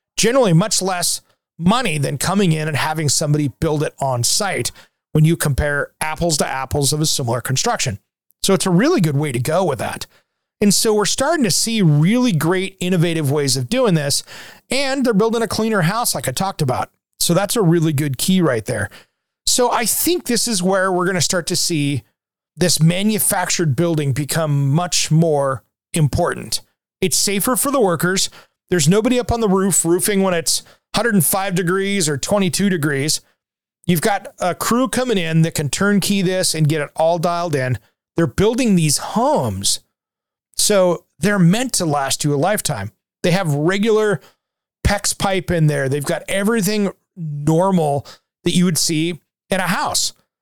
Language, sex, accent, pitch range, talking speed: English, male, American, 155-205 Hz, 175 wpm